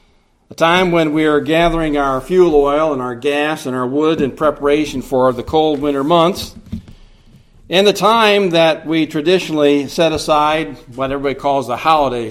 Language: English